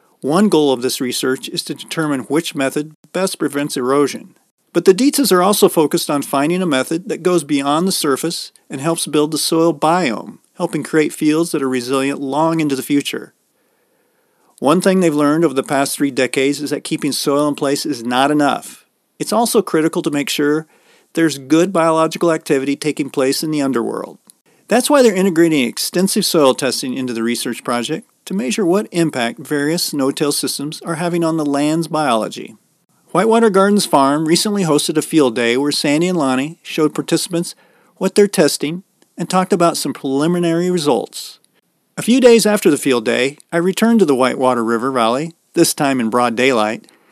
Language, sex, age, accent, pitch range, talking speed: English, male, 40-59, American, 140-175 Hz, 185 wpm